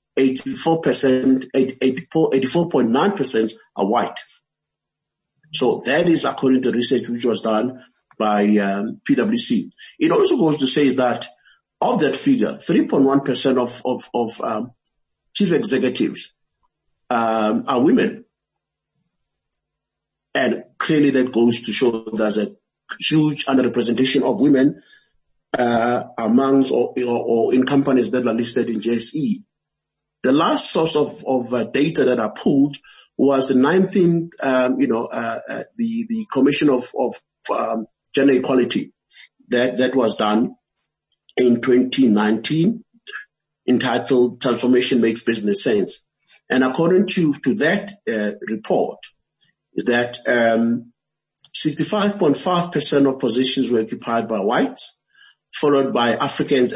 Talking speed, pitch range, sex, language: 125 wpm, 120-150 Hz, male, English